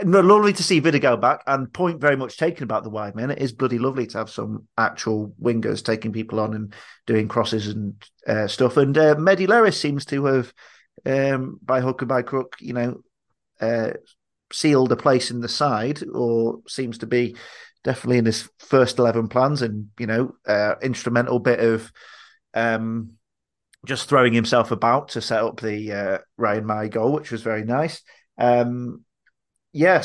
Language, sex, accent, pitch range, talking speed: English, male, British, 110-135 Hz, 180 wpm